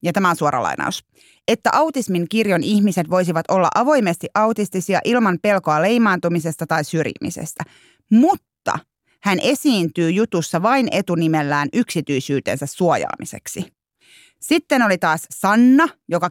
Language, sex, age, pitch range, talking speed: Finnish, female, 30-49, 170-215 Hz, 115 wpm